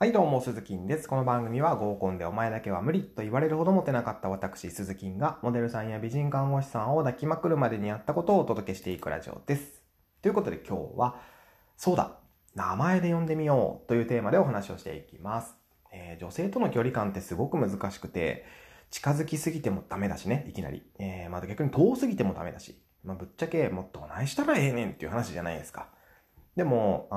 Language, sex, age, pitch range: Japanese, male, 20-39, 95-140 Hz